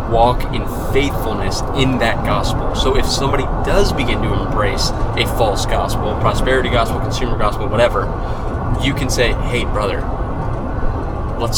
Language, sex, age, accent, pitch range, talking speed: English, male, 20-39, American, 105-125 Hz, 140 wpm